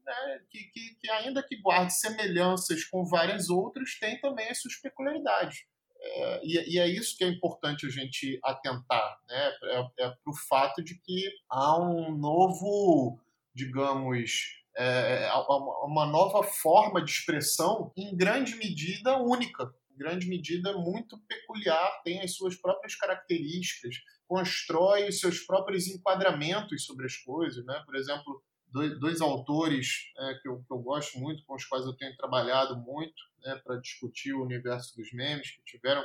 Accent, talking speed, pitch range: Brazilian, 160 wpm, 130-185 Hz